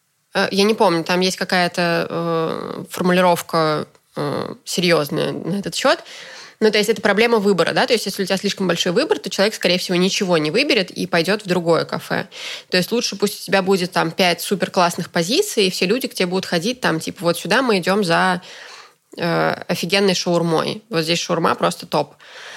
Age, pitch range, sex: 20-39, 170-200 Hz, female